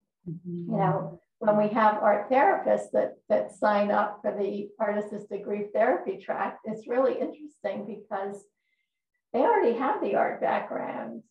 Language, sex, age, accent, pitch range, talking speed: English, female, 50-69, American, 195-220 Hz, 145 wpm